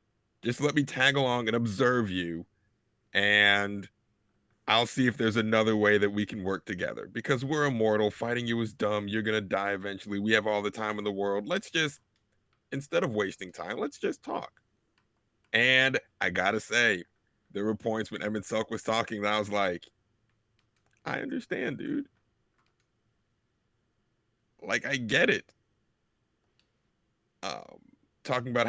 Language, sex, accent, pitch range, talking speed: English, male, American, 105-115 Hz, 160 wpm